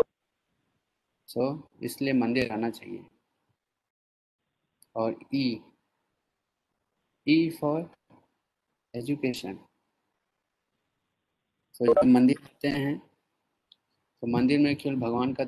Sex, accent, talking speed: male, native, 75 wpm